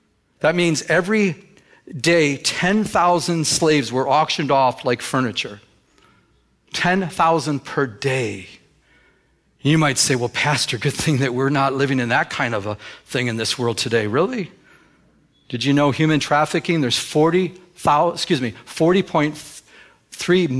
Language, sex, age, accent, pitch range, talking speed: English, male, 40-59, American, 130-165 Hz, 135 wpm